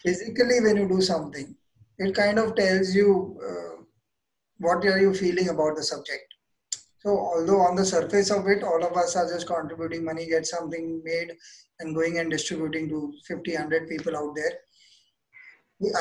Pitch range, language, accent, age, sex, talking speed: 160-195 Hz, English, Indian, 20-39, male, 170 wpm